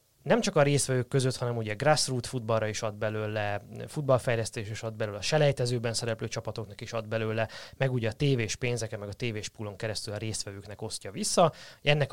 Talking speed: 195 wpm